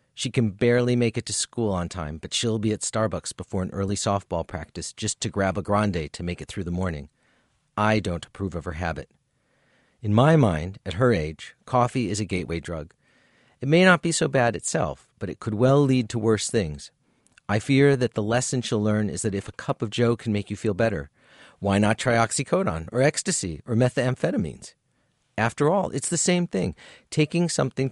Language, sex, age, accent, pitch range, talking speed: English, male, 40-59, American, 100-130 Hz, 210 wpm